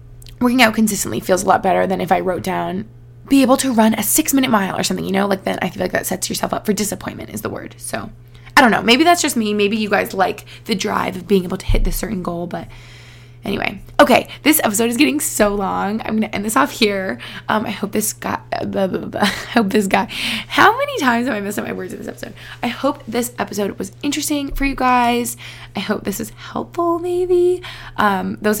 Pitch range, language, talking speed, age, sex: 190-250 Hz, English, 250 wpm, 20-39, female